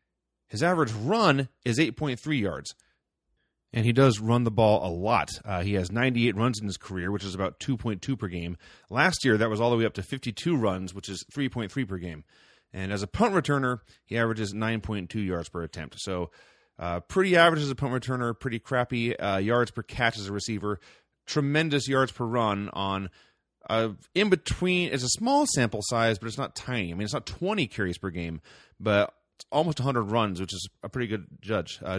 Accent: American